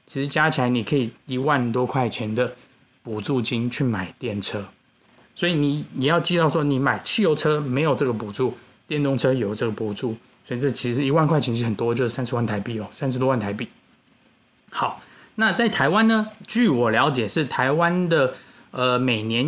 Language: Chinese